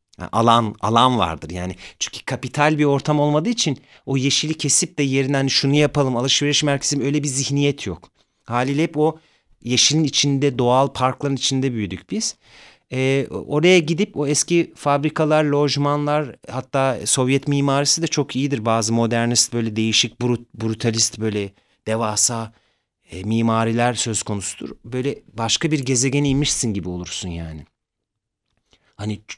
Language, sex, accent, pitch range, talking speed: Turkish, male, native, 115-145 Hz, 135 wpm